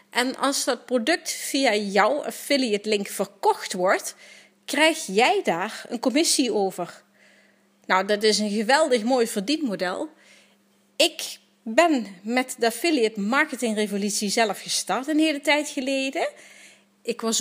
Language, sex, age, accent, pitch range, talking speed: Dutch, female, 30-49, Dutch, 215-290 Hz, 130 wpm